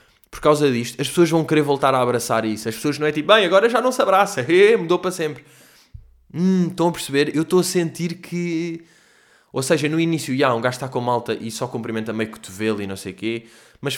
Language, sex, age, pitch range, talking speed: Portuguese, male, 20-39, 110-150 Hz, 240 wpm